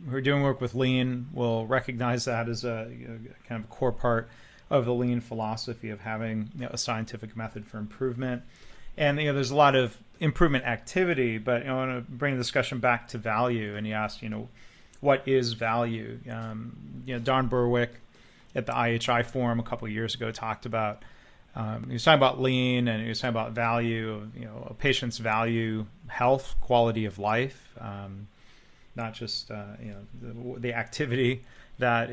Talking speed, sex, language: 200 wpm, male, English